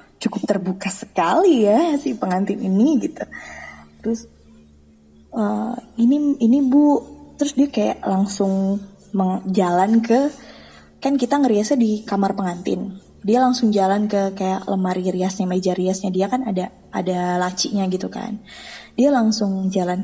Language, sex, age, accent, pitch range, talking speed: Indonesian, female, 20-39, native, 180-225 Hz, 135 wpm